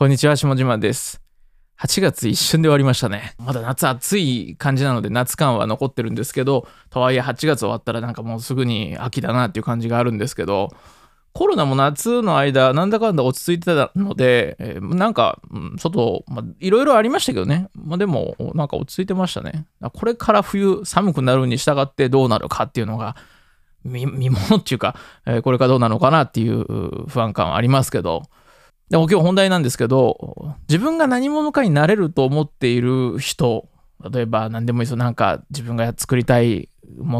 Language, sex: Japanese, male